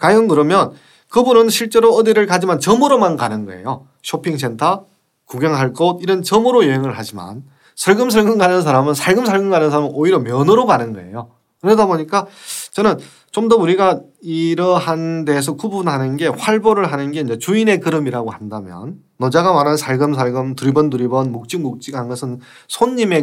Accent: native